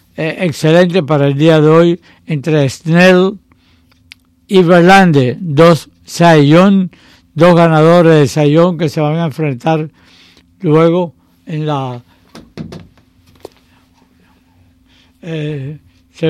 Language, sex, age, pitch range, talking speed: English, male, 60-79, 115-175 Hz, 100 wpm